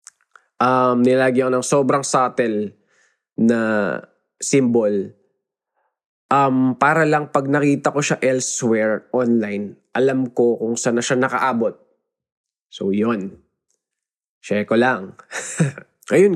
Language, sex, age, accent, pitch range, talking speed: Filipino, male, 20-39, native, 115-140 Hz, 110 wpm